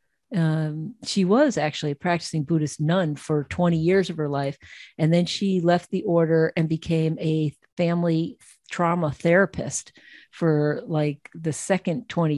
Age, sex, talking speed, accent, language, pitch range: 50-69, female, 150 wpm, American, English, 160-205 Hz